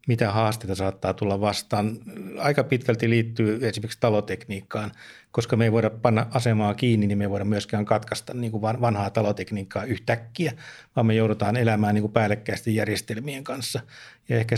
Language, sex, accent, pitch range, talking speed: Finnish, male, native, 105-120 Hz, 150 wpm